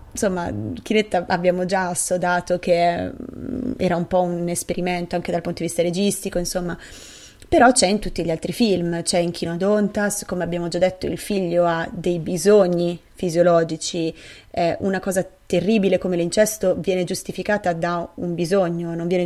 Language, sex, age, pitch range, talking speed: Italian, female, 20-39, 170-190 Hz, 160 wpm